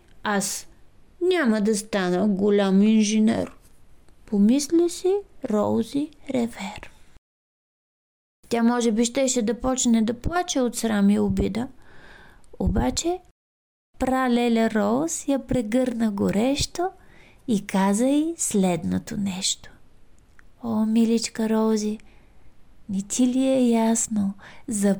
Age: 20-39